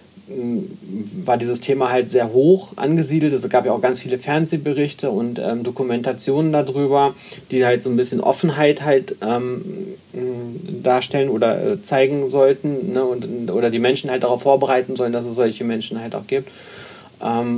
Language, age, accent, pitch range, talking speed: German, 40-59, German, 120-145 Hz, 160 wpm